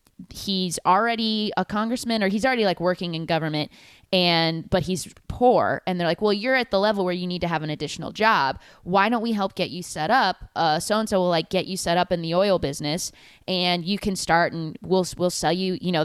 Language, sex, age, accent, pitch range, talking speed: English, female, 10-29, American, 155-190 Hz, 230 wpm